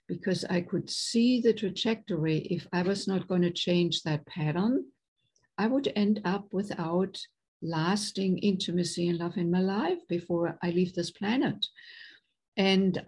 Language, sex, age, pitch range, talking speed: English, female, 60-79, 175-210 Hz, 145 wpm